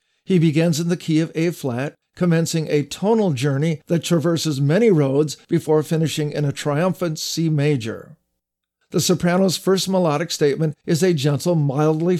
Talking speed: 150 wpm